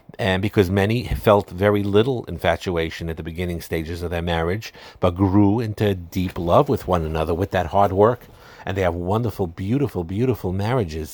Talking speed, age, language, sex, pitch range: 180 wpm, 50-69, English, male, 90-105 Hz